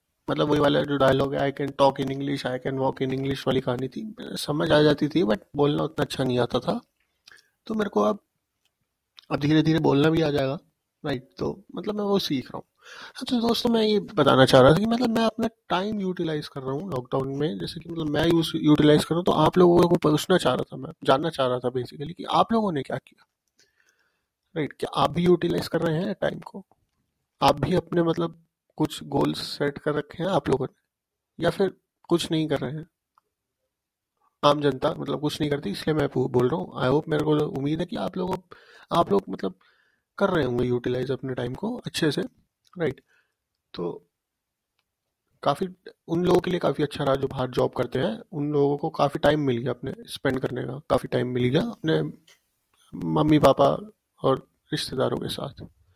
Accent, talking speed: Indian, 135 wpm